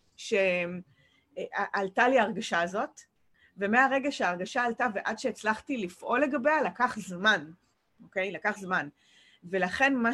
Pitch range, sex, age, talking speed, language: 185-245 Hz, female, 30-49, 105 wpm, English